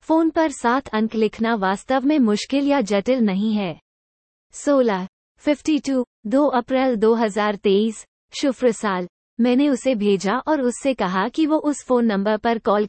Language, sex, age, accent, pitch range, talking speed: Hindi, female, 20-39, native, 210-275 Hz, 150 wpm